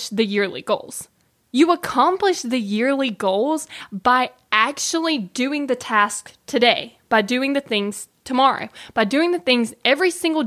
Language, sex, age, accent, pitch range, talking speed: English, female, 10-29, American, 210-290 Hz, 145 wpm